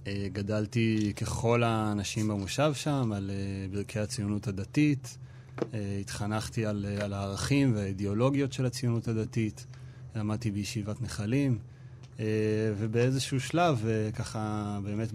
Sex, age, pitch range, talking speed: male, 30-49, 105-125 Hz, 90 wpm